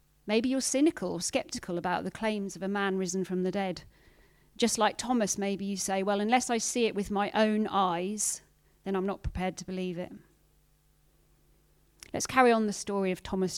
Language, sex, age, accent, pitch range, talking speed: English, female, 40-59, British, 185-235 Hz, 195 wpm